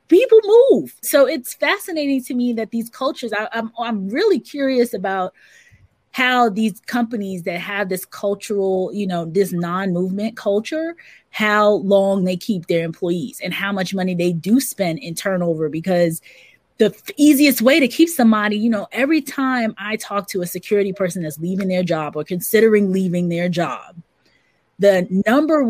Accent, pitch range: American, 195-250 Hz